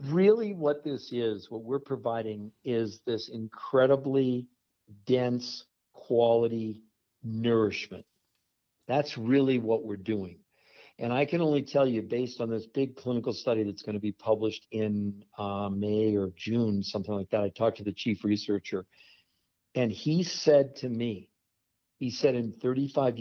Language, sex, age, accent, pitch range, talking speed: English, male, 50-69, American, 105-125 Hz, 150 wpm